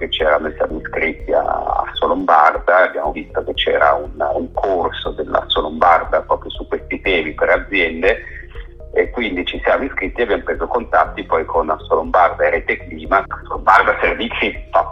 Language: Italian